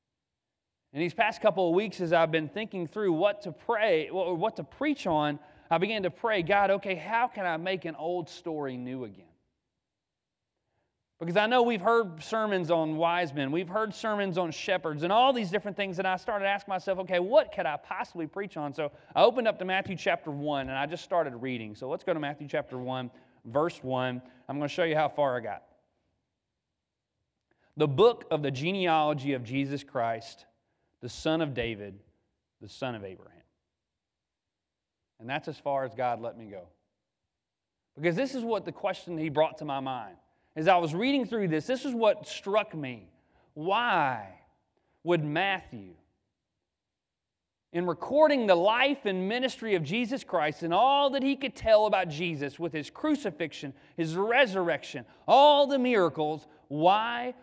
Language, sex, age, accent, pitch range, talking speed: English, male, 30-49, American, 140-200 Hz, 180 wpm